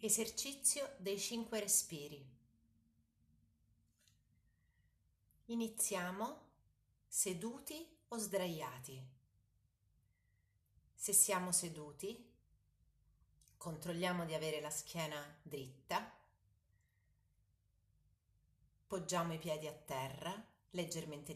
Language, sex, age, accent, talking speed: Italian, female, 40-59, native, 65 wpm